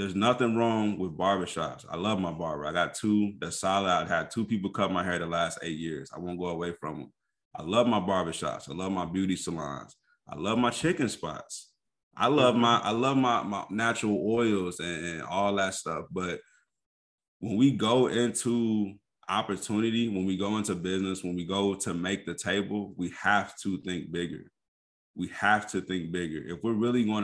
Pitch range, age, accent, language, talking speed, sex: 90-105 Hz, 20-39, American, English, 195 wpm, male